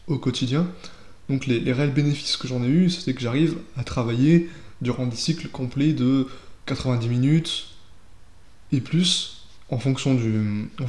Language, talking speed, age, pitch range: French, 160 wpm, 20-39, 115-140 Hz